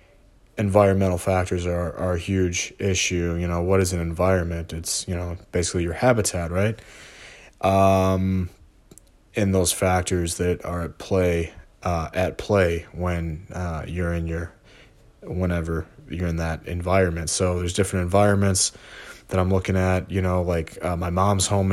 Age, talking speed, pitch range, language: 20-39, 155 wpm, 90-100 Hz, English